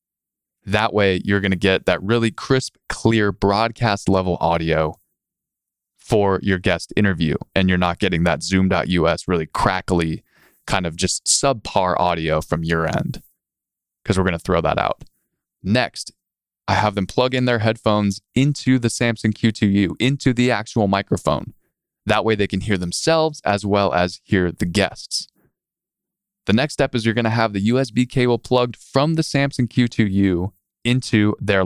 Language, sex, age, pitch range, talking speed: English, male, 20-39, 90-120 Hz, 155 wpm